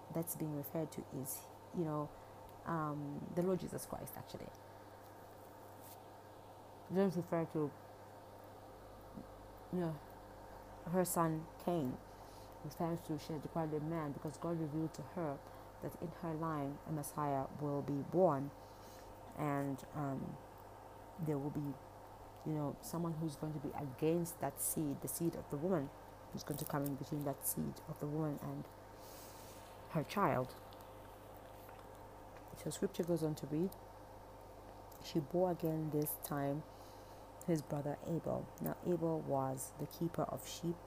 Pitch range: 105-160 Hz